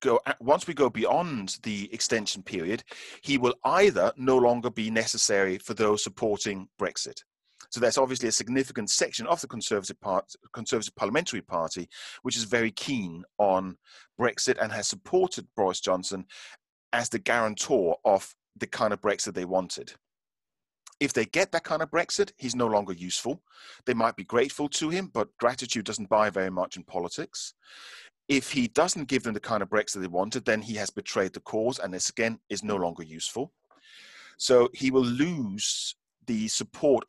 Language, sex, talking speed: English, male, 170 wpm